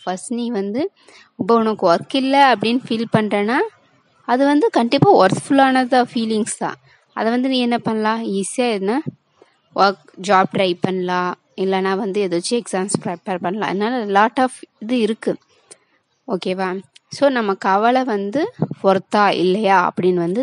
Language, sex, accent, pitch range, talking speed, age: Tamil, female, native, 185-240 Hz, 125 wpm, 20-39